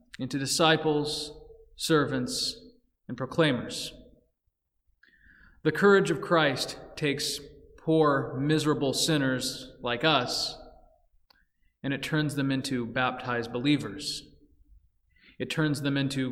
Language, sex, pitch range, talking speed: English, male, 130-170 Hz, 95 wpm